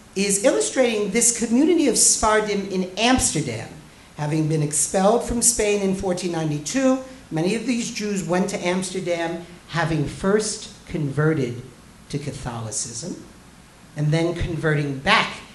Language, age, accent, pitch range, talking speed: English, 50-69, American, 160-220 Hz, 120 wpm